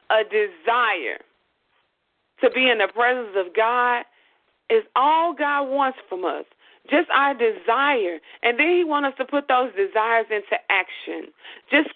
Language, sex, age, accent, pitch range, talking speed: English, female, 40-59, American, 250-360 Hz, 150 wpm